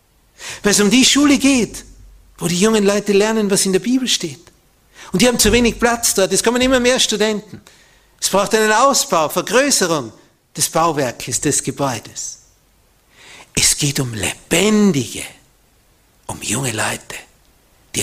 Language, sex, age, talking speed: German, male, 60-79, 150 wpm